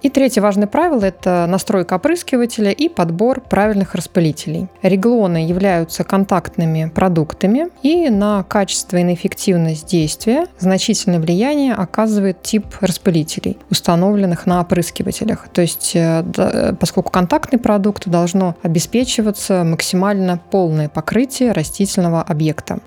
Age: 20-39